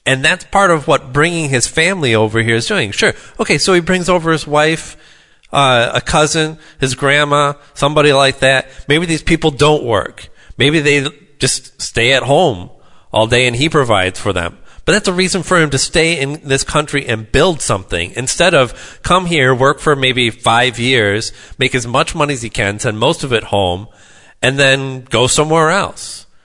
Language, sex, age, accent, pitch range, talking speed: English, male, 30-49, American, 115-150 Hz, 195 wpm